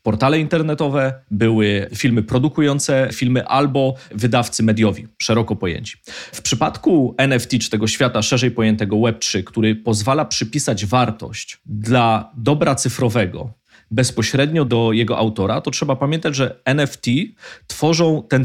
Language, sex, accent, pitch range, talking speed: Polish, male, native, 110-140 Hz, 125 wpm